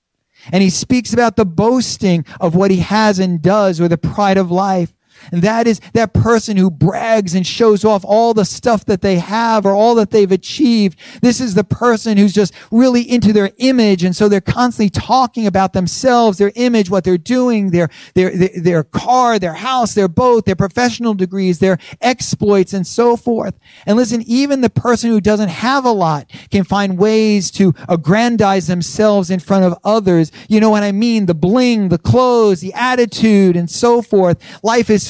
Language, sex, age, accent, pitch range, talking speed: English, male, 40-59, American, 185-230 Hz, 195 wpm